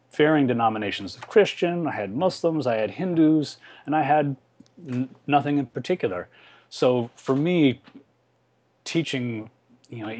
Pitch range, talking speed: 100-140 Hz, 135 wpm